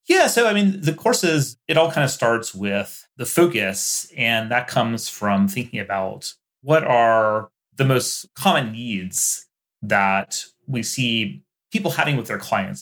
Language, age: English, 30-49